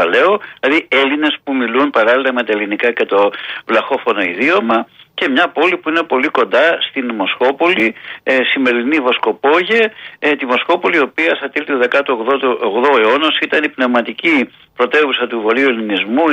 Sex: male